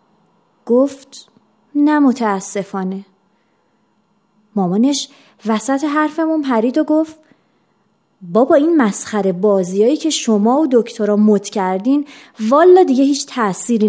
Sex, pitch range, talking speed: female, 215-315 Hz, 95 wpm